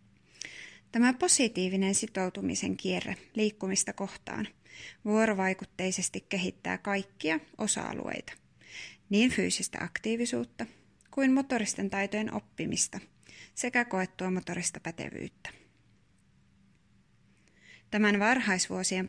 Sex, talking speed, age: female, 70 wpm, 20-39